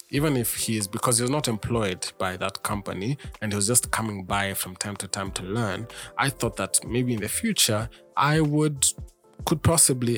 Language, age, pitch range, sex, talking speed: English, 20-39, 100-120 Hz, male, 205 wpm